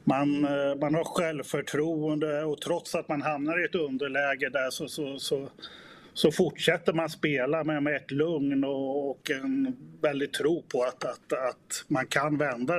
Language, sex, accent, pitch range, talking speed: English, male, Swedish, 130-155 Hz, 170 wpm